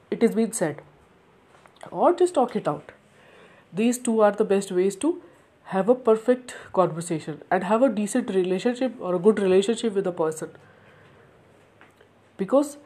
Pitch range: 180-250 Hz